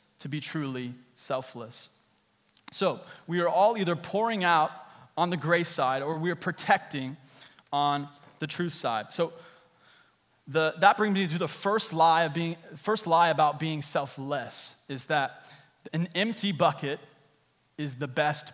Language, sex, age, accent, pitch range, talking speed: English, male, 20-39, American, 150-185 Hz, 150 wpm